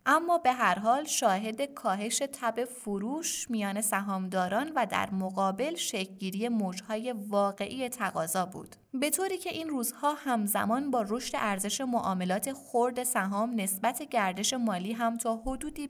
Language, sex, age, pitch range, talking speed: Persian, female, 20-39, 195-250 Hz, 140 wpm